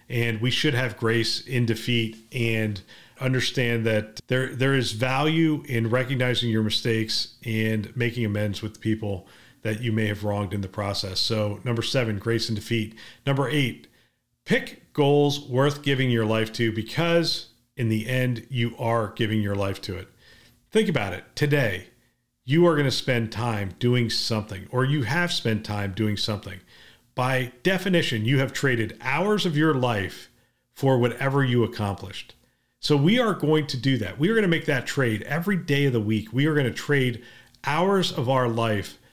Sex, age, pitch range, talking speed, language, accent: male, 40-59, 110-145 Hz, 180 wpm, English, American